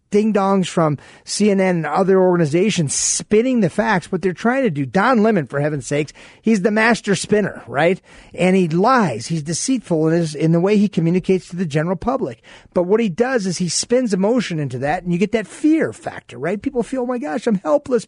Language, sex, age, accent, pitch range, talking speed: English, male, 40-59, American, 170-225 Hz, 210 wpm